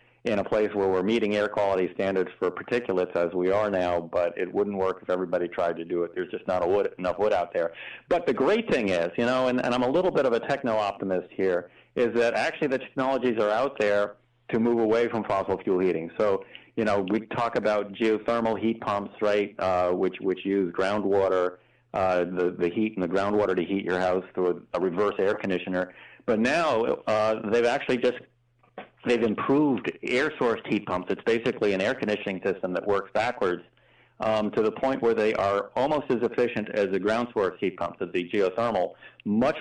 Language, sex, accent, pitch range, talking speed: English, male, American, 95-120 Hz, 210 wpm